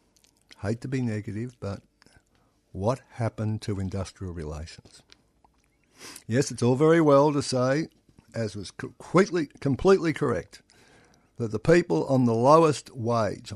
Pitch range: 110-130 Hz